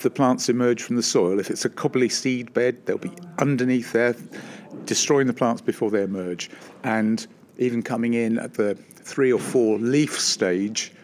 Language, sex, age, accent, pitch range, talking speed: English, male, 50-69, British, 110-135 Hz, 180 wpm